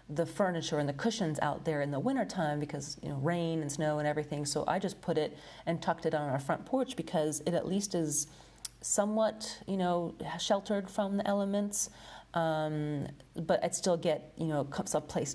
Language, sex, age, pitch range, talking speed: English, female, 30-49, 150-180 Hz, 205 wpm